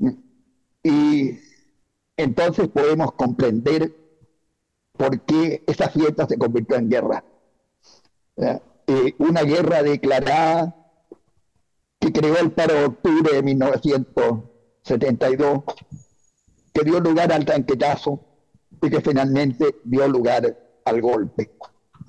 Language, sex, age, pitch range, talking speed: Spanish, male, 60-79, 135-170 Hz, 100 wpm